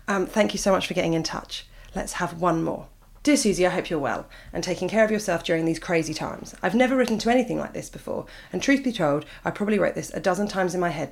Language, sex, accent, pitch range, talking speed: English, female, British, 160-215 Hz, 270 wpm